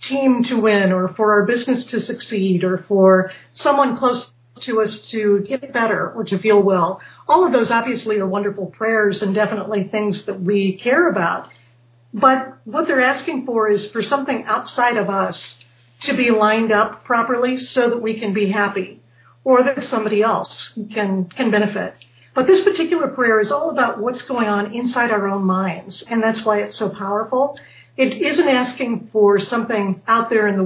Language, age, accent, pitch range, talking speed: English, 50-69, American, 195-245 Hz, 185 wpm